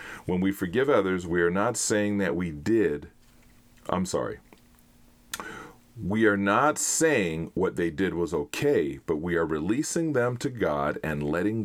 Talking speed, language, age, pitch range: 160 wpm, English, 40-59, 90-120 Hz